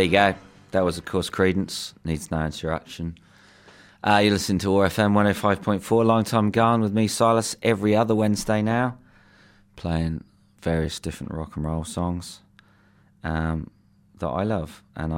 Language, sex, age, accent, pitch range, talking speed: English, male, 30-49, British, 80-100 Hz, 150 wpm